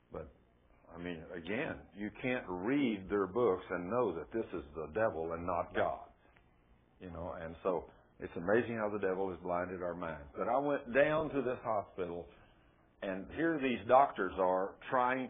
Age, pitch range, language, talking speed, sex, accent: 60-79, 85-125 Hz, English, 175 wpm, male, American